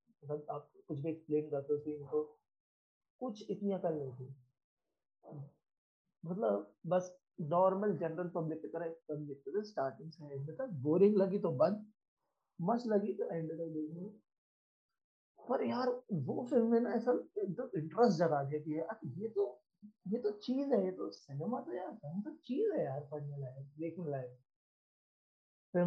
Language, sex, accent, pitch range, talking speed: Hindi, male, native, 155-205 Hz, 45 wpm